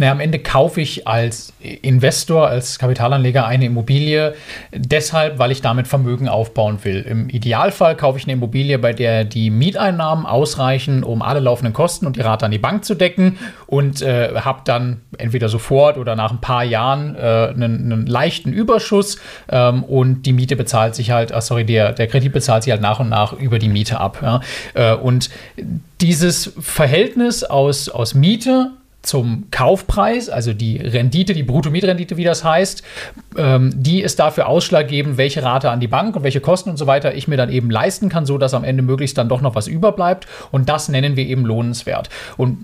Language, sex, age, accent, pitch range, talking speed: German, male, 40-59, German, 120-155 Hz, 185 wpm